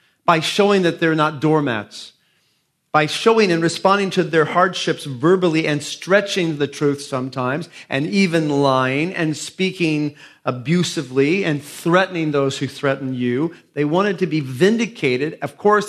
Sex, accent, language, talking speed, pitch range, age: male, American, English, 145 wpm, 135-175 Hz, 40-59